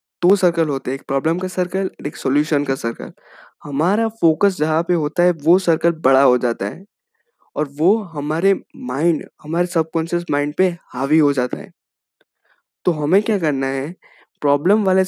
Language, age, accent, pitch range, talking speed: Hindi, 20-39, native, 140-185 Hz, 175 wpm